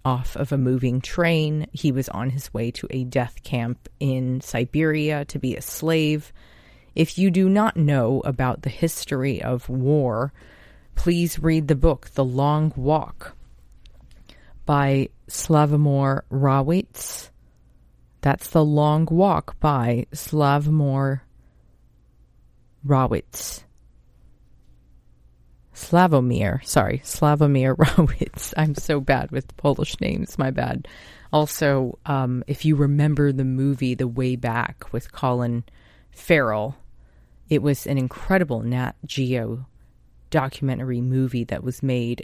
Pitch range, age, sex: 125-150 Hz, 30-49, female